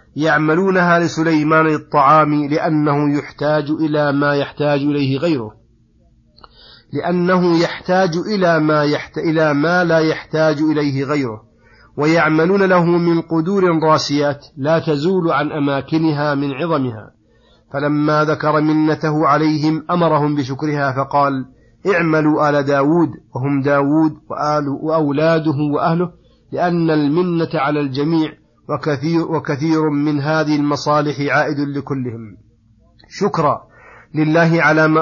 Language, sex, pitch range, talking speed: Arabic, male, 145-165 Hz, 105 wpm